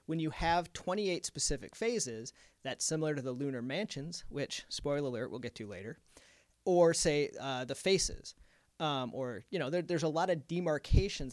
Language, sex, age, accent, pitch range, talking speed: English, male, 30-49, American, 135-170 Hz, 175 wpm